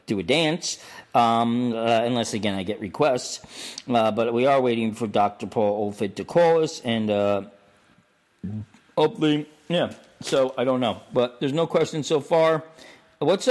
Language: English